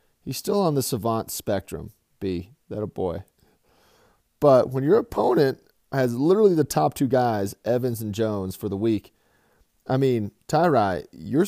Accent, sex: American, male